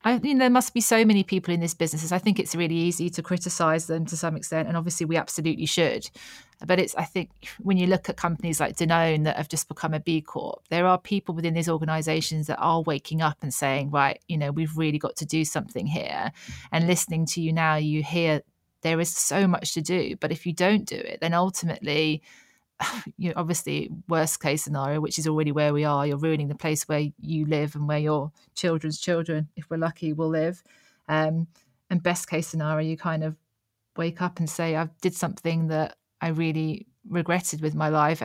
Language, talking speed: English, 220 wpm